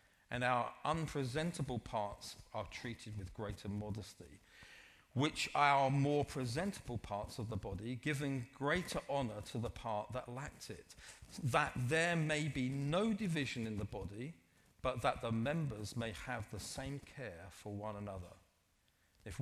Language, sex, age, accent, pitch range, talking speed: English, male, 40-59, British, 105-140 Hz, 150 wpm